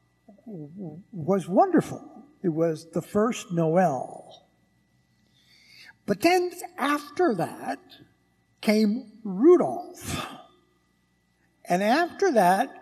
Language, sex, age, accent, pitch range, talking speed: English, male, 60-79, American, 155-250 Hz, 75 wpm